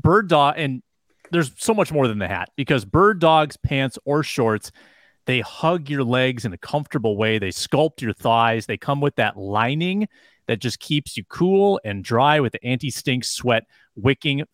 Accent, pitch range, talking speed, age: American, 115-155 Hz, 185 wpm, 30-49